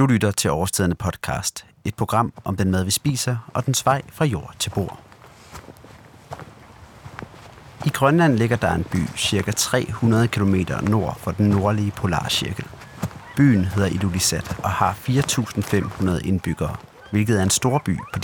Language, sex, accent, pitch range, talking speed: Danish, male, native, 95-130 Hz, 150 wpm